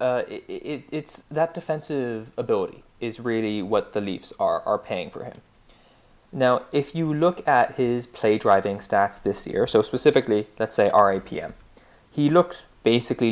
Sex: male